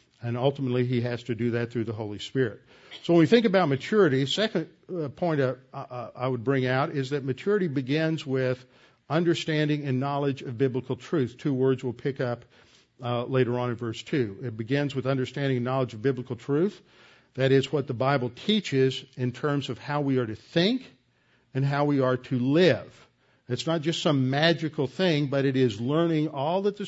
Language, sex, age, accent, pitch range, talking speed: English, male, 50-69, American, 125-155 Hz, 195 wpm